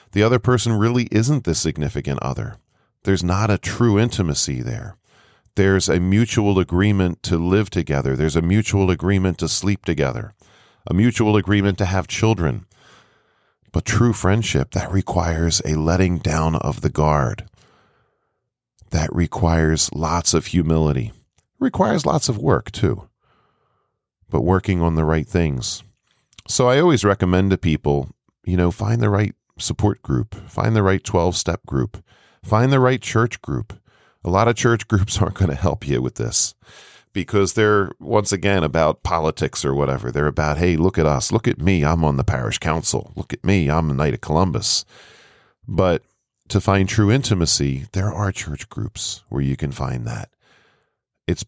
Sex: male